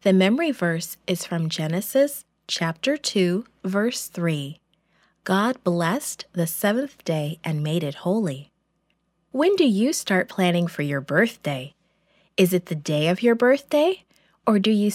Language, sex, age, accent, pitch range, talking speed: English, female, 20-39, American, 170-240 Hz, 150 wpm